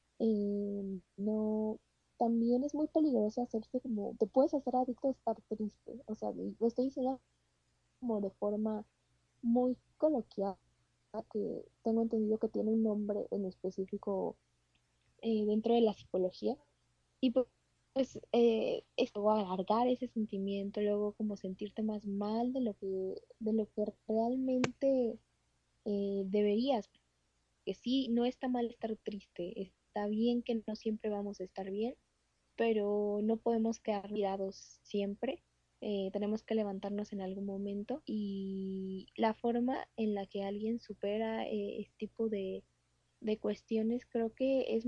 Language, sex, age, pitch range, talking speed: Spanish, female, 20-39, 200-235 Hz, 145 wpm